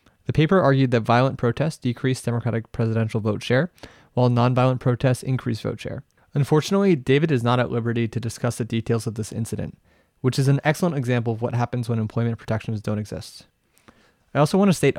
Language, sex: English, male